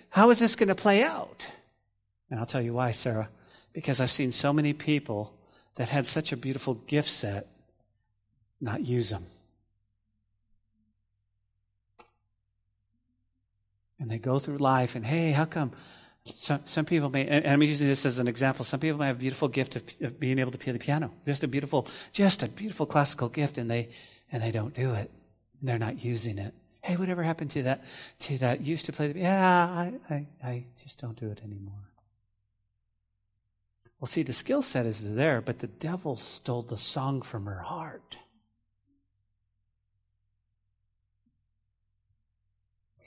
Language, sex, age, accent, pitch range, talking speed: English, male, 40-59, American, 105-145 Hz, 165 wpm